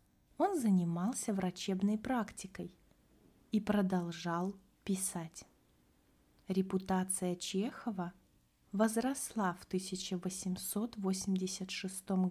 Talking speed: 60 wpm